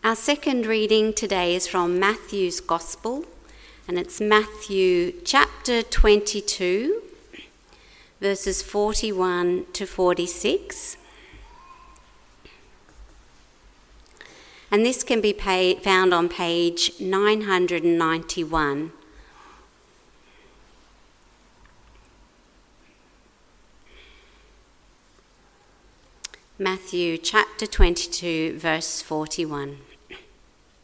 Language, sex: English, female